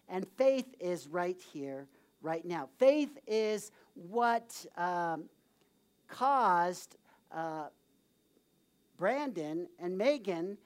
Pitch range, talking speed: 180-225 Hz, 90 wpm